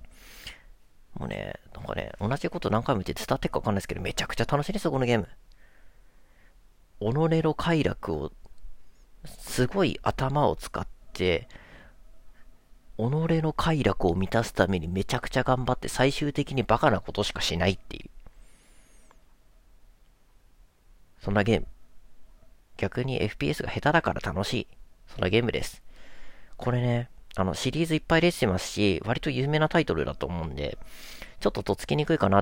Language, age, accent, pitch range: Japanese, 40-59, native, 90-130 Hz